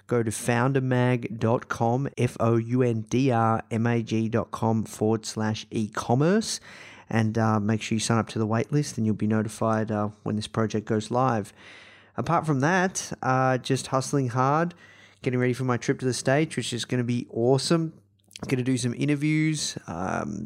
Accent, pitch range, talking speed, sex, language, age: Australian, 115-135 Hz, 160 wpm, male, English, 30-49